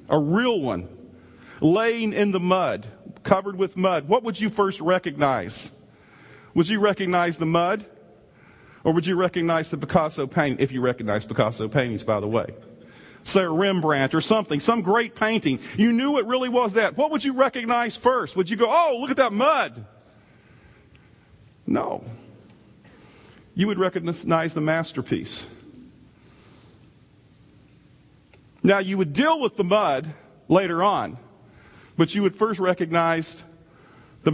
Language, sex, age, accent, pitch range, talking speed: English, male, 40-59, American, 160-230 Hz, 145 wpm